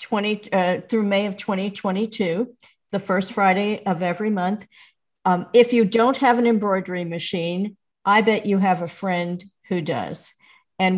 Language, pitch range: English, 180-220 Hz